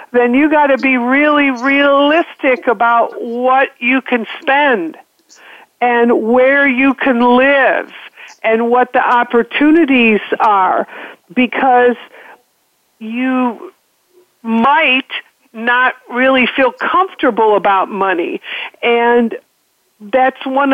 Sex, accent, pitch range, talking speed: female, American, 230-270 Hz, 95 wpm